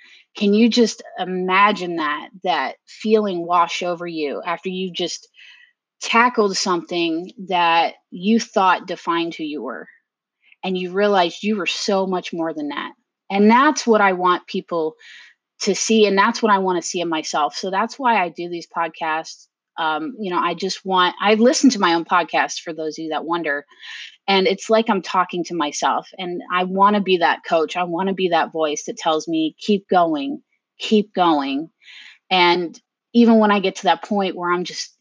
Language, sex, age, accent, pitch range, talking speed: English, female, 30-49, American, 165-205 Hz, 190 wpm